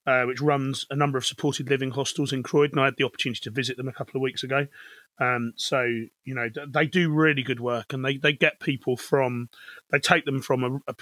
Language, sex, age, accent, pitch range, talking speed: English, male, 30-49, British, 125-150 Hz, 240 wpm